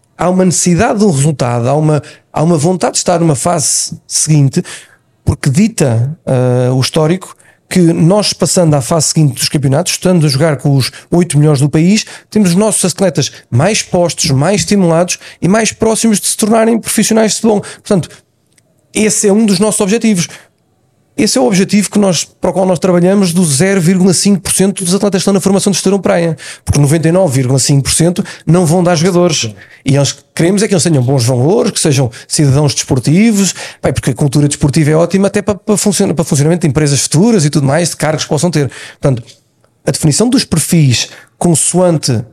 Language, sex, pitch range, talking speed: Portuguese, male, 140-190 Hz, 185 wpm